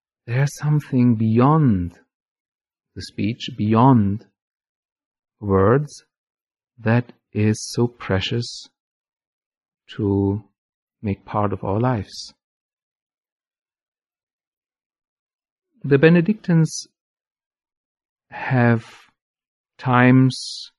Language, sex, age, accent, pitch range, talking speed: English, male, 50-69, German, 100-135 Hz, 60 wpm